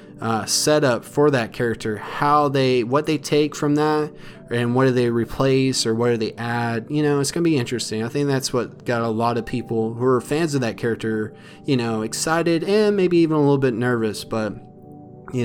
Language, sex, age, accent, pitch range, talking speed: English, male, 30-49, American, 115-145 Hz, 220 wpm